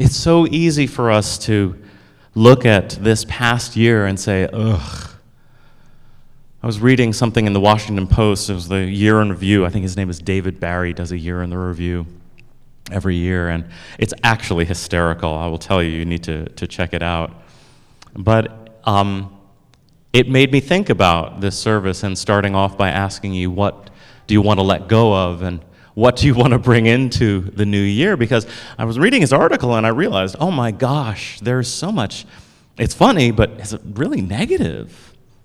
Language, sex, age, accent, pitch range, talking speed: English, male, 30-49, American, 95-125 Hz, 195 wpm